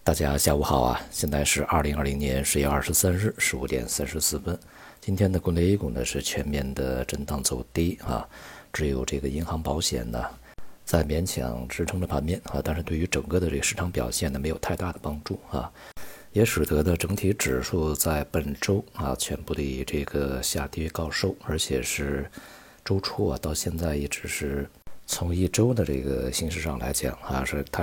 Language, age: Chinese, 50-69